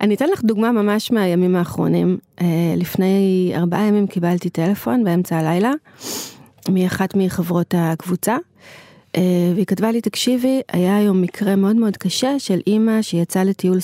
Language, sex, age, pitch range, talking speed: Hebrew, female, 30-49, 185-215 Hz, 135 wpm